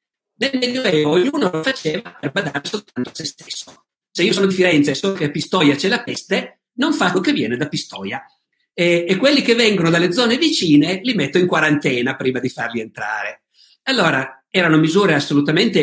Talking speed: 185 wpm